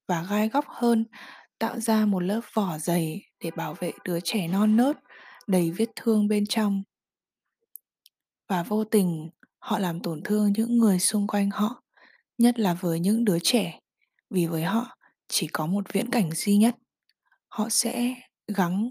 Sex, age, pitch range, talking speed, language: female, 20-39, 185-235 Hz, 170 wpm, Vietnamese